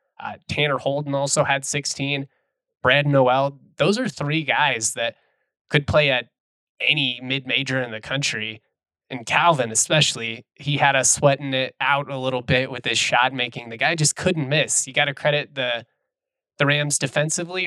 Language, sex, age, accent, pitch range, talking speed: English, male, 20-39, American, 120-150 Hz, 170 wpm